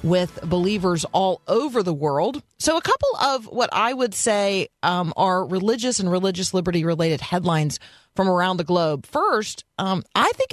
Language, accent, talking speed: English, American, 165 wpm